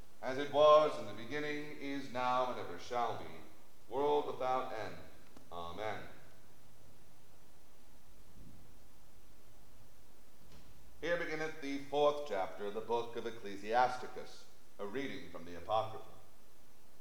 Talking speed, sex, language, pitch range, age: 110 wpm, male, English, 115-150 Hz, 40-59